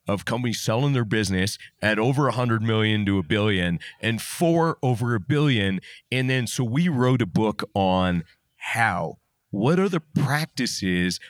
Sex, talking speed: male, 165 wpm